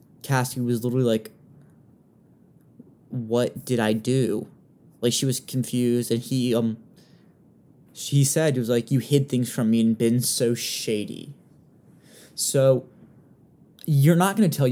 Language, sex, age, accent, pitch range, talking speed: English, male, 20-39, American, 120-140 Hz, 145 wpm